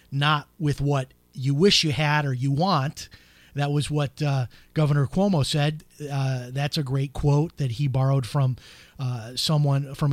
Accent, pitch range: American, 135-160 Hz